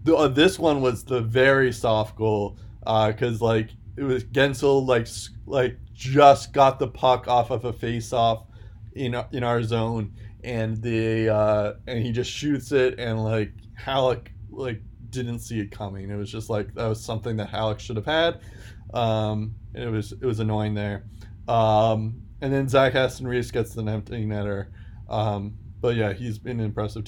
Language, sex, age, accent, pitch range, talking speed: English, male, 20-39, American, 110-125 Hz, 180 wpm